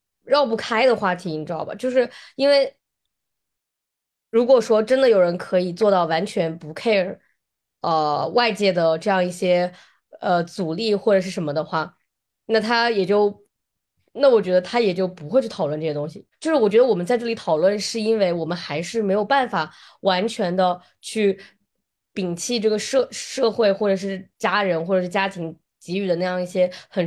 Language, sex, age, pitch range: Chinese, female, 20-39, 175-215 Hz